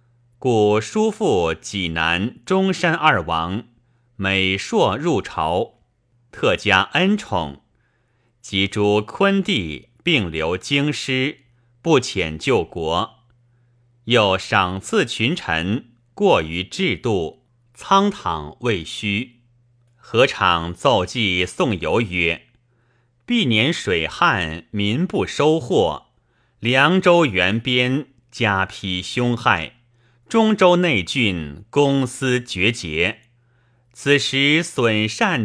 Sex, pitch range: male, 105-130 Hz